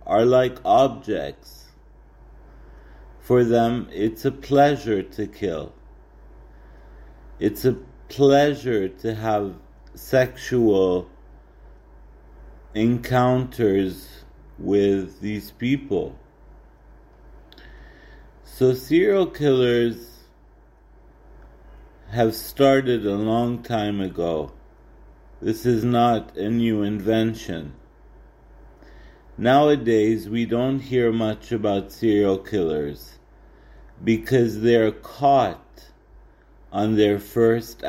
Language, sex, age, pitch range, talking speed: English, male, 50-69, 75-120 Hz, 80 wpm